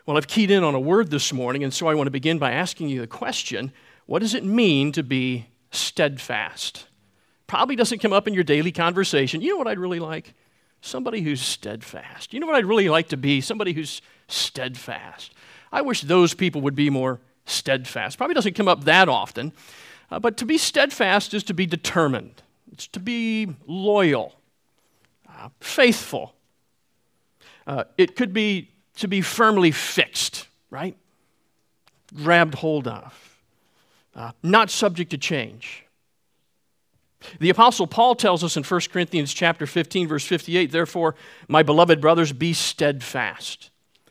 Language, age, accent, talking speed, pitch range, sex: English, 50-69, American, 160 wpm, 145-205 Hz, male